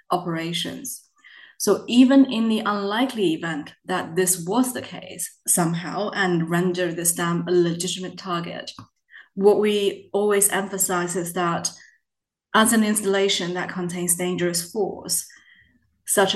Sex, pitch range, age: female, 180-220 Hz, 20-39